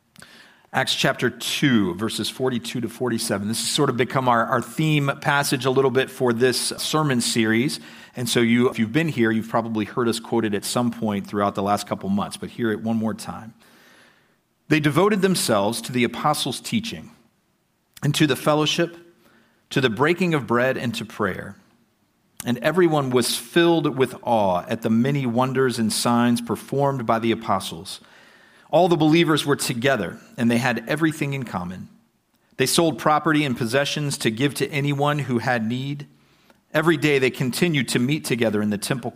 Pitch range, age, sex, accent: 115-150 Hz, 40-59, male, American